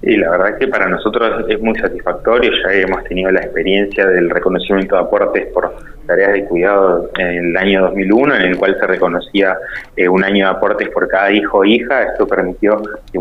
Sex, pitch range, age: male, 95-110 Hz, 20-39